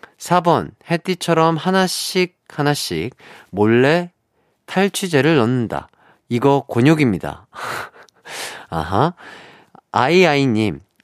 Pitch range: 120-175 Hz